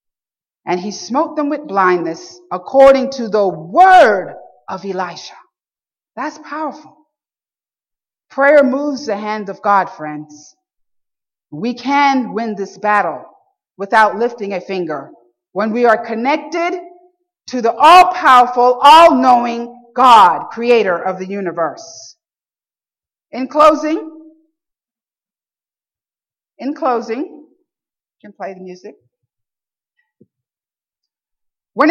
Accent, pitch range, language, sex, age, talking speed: American, 215-315 Hz, English, female, 50-69, 100 wpm